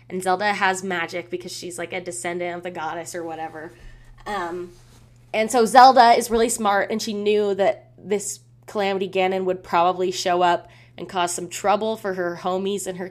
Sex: female